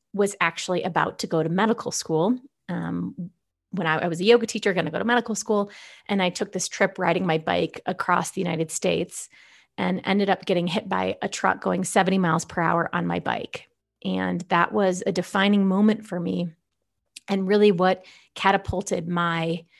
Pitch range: 165-195 Hz